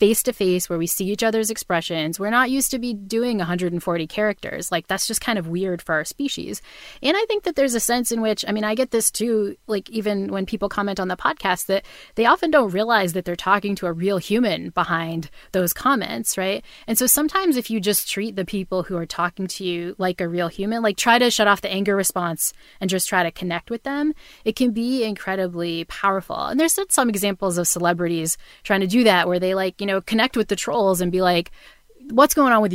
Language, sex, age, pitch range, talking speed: English, female, 30-49, 175-225 Hz, 240 wpm